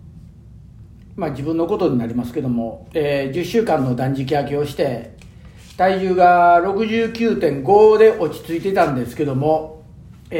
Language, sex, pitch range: Japanese, male, 135-185 Hz